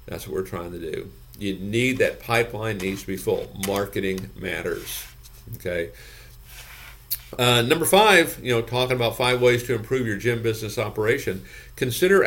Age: 50-69